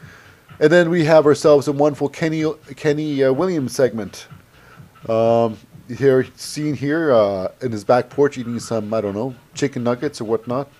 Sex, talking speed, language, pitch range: male, 165 wpm, English, 120-155 Hz